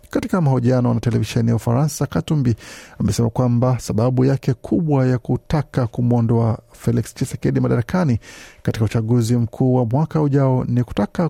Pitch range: 115-145 Hz